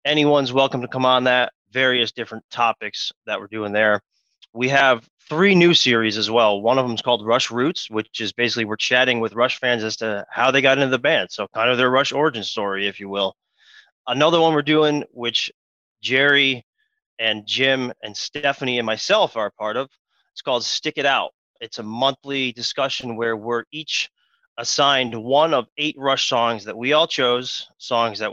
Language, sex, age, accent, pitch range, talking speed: English, male, 30-49, American, 115-145 Hz, 195 wpm